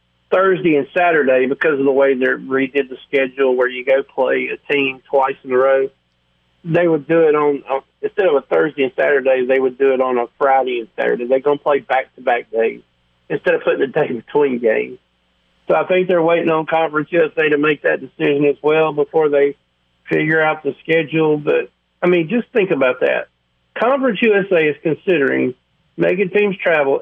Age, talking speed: 50-69, 200 wpm